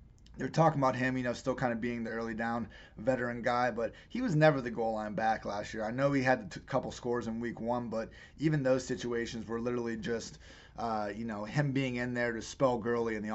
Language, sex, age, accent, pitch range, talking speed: English, male, 30-49, American, 110-130 Hz, 245 wpm